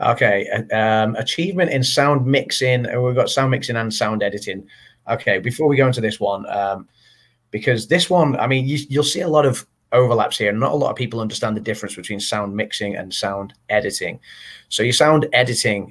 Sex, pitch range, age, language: male, 105-125 Hz, 30-49, English